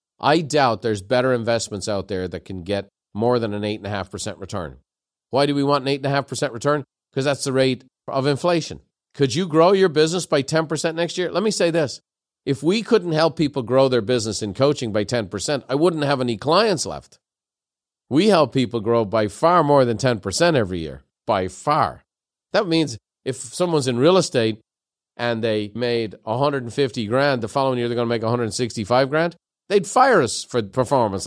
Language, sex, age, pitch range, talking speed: English, male, 40-59, 105-145 Hz, 190 wpm